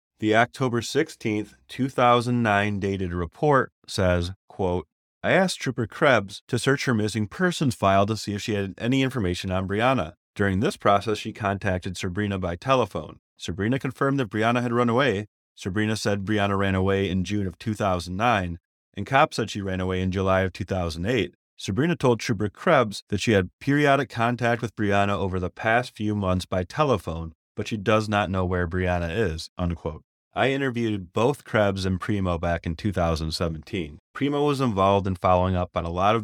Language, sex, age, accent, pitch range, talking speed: English, male, 30-49, American, 90-110 Hz, 175 wpm